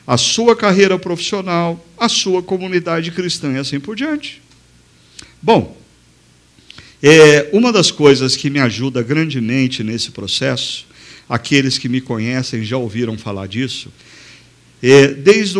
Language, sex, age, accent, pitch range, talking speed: Portuguese, male, 50-69, Brazilian, 115-145 Hz, 120 wpm